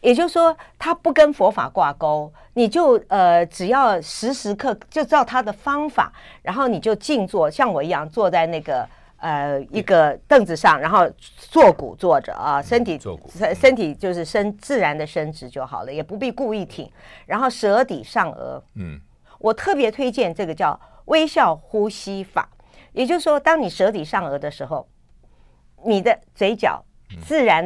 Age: 50-69